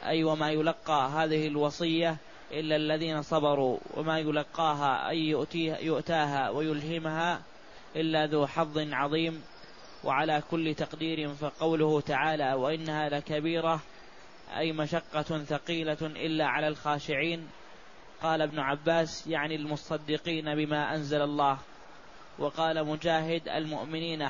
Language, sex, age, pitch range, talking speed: Arabic, male, 20-39, 150-160 Hz, 105 wpm